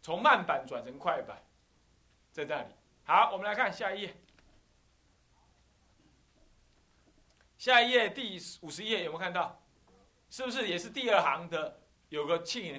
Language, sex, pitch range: Chinese, male, 160-240 Hz